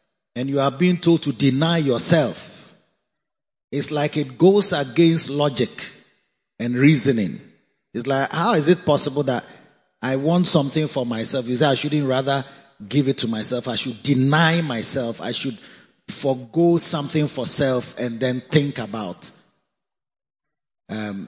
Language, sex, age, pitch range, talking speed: English, male, 30-49, 125-165 Hz, 145 wpm